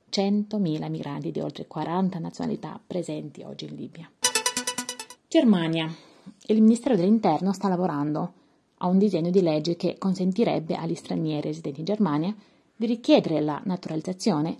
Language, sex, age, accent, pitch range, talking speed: Italian, female, 30-49, native, 165-220 Hz, 130 wpm